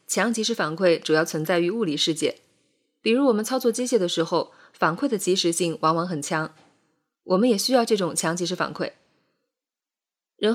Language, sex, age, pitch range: Chinese, female, 20-39, 170-220 Hz